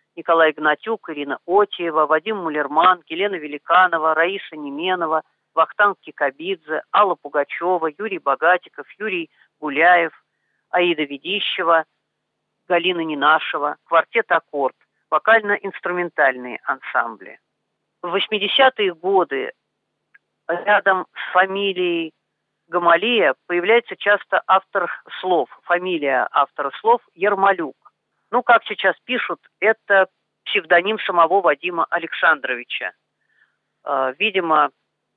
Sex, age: female, 40-59